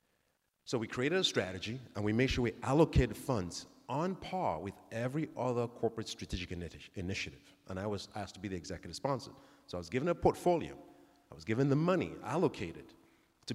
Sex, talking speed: male, 190 wpm